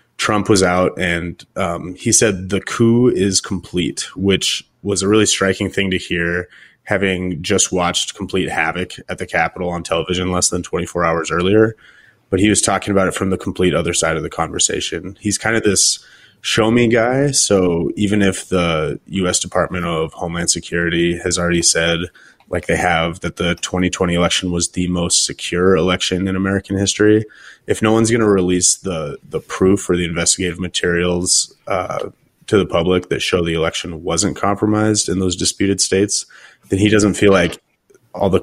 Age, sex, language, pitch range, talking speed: 20-39, male, English, 85-100 Hz, 180 wpm